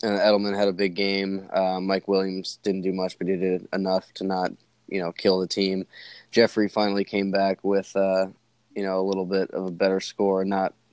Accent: American